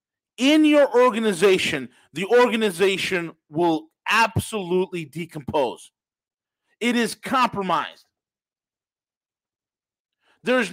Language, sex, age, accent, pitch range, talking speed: English, male, 50-69, American, 160-240 Hz, 65 wpm